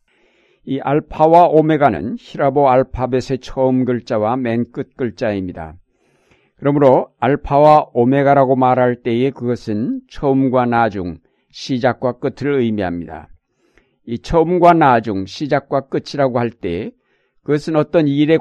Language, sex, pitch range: Korean, male, 120-145 Hz